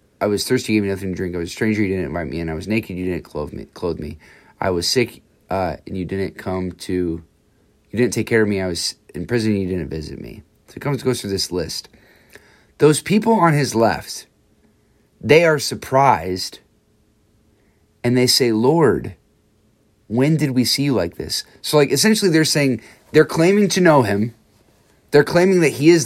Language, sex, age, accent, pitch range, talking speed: English, male, 30-49, American, 105-140 Hz, 210 wpm